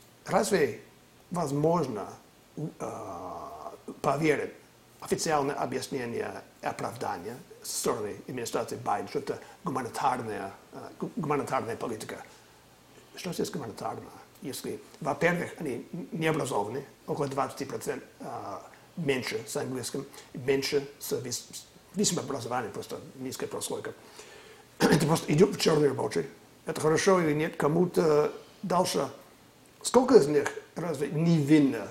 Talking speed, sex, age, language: 105 wpm, male, 50-69, Russian